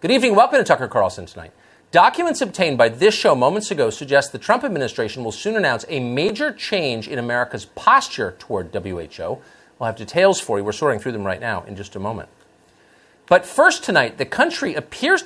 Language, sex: English, male